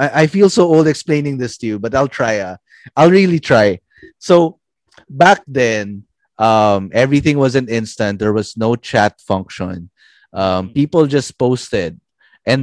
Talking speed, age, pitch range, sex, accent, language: 155 wpm, 20-39, 100-130 Hz, male, native, Filipino